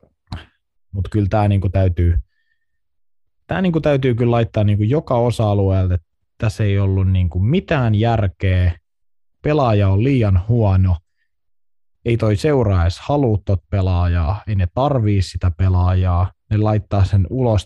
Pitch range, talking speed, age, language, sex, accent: 90-110 Hz, 120 wpm, 20-39, Finnish, male, native